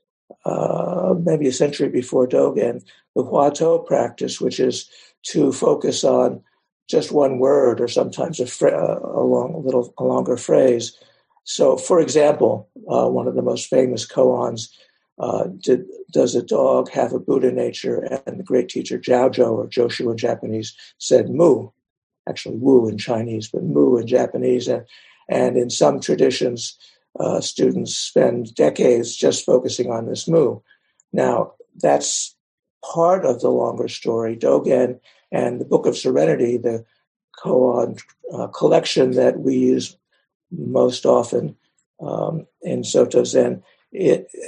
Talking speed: 145 wpm